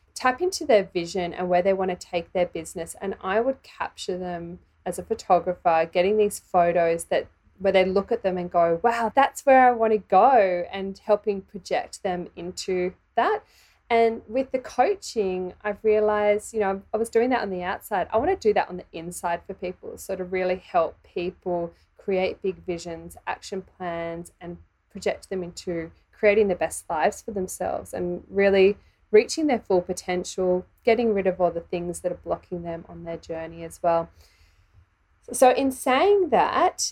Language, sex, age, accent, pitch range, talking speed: English, female, 20-39, Australian, 170-210 Hz, 185 wpm